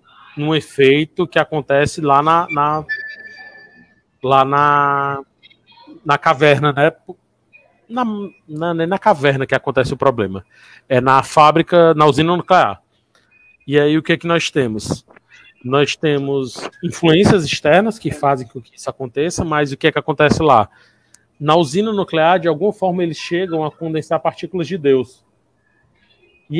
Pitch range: 140-175 Hz